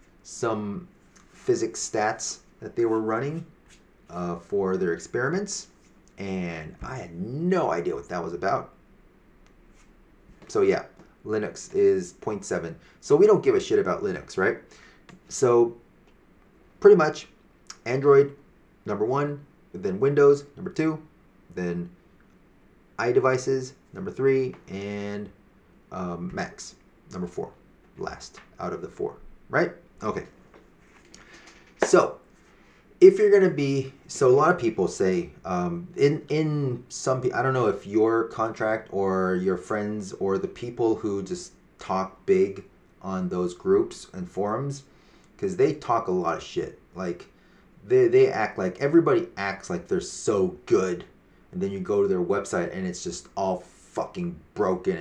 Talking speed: 140 wpm